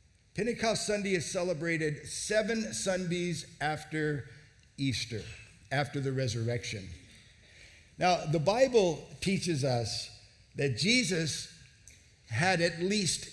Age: 50-69